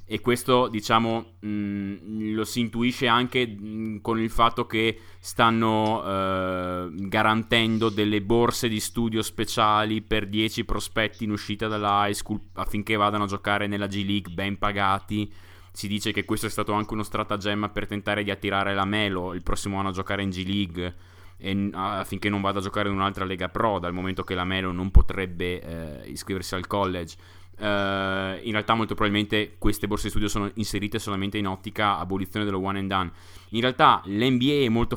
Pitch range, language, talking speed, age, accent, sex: 95-110 Hz, Italian, 180 wpm, 20-39, native, male